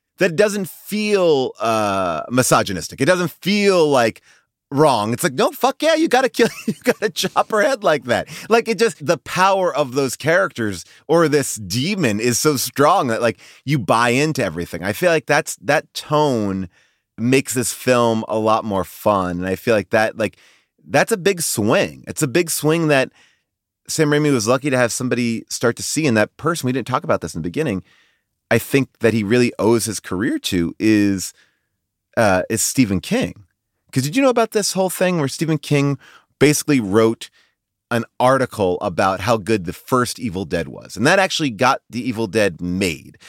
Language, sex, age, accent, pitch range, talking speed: English, male, 30-49, American, 110-155 Hz, 195 wpm